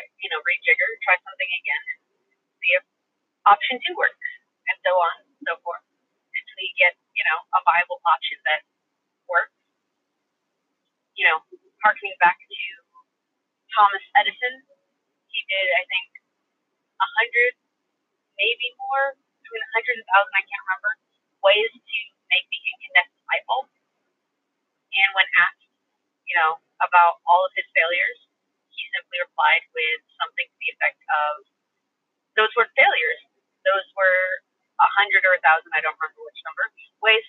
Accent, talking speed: American, 145 wpm